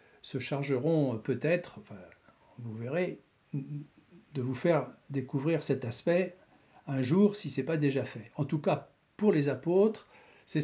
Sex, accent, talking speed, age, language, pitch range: male, French, 150 wpm, 60-79, French, 130-180 Hz